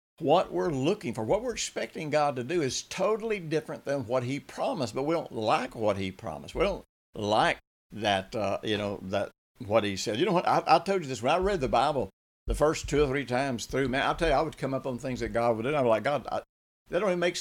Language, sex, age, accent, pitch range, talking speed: English, male, 60-79, American, 105-140 Hz, 270 wpm